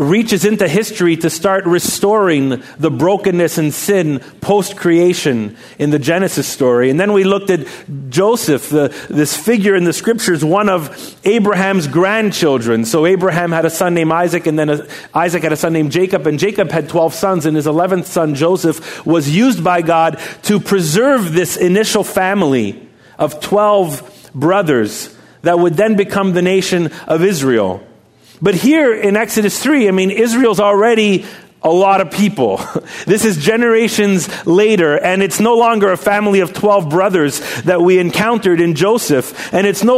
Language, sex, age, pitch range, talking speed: English, male, 40-59, 165-210 Hz, 165 wpm